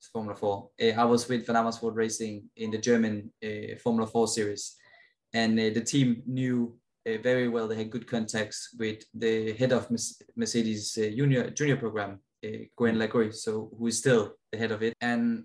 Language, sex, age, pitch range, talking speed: English, male, 20-39, 110-125 Hz, 190 wpm